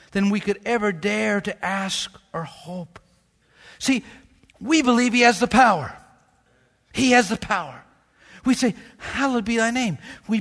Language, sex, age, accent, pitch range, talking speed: English, male, 60-79, American, 200-260 Hz, 155 wpm